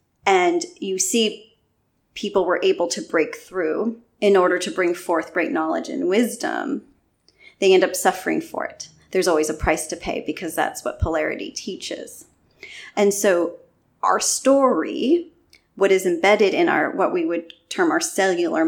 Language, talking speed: English, 160 wpm